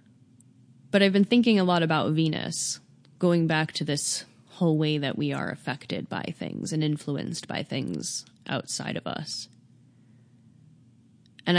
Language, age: English, 10-29